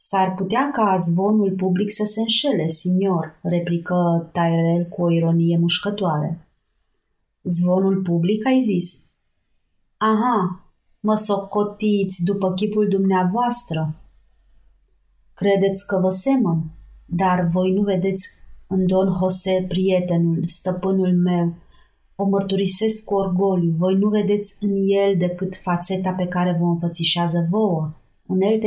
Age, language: 30-49, Romanian